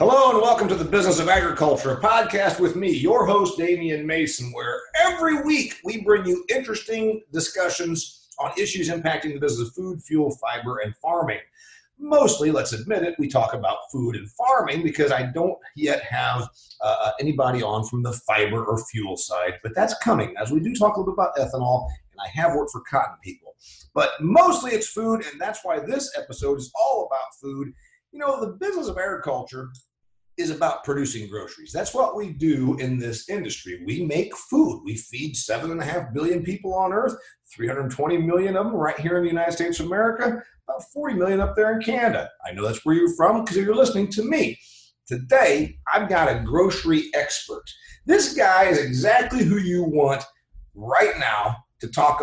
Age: 40-59